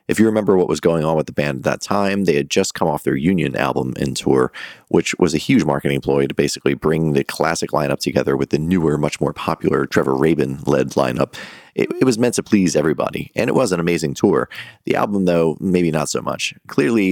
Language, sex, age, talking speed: English, male, 30-49, 230 wpm